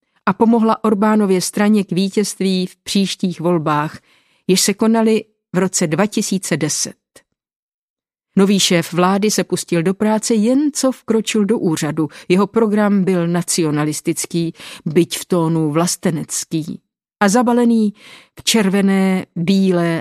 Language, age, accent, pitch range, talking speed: Czech, 50-69, native, 165-210 Hz, 120 wpm